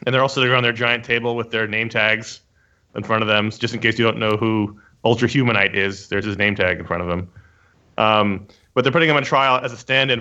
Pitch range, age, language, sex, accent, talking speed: 100-120 Hz, 30-49, English, male, American, 265 wpm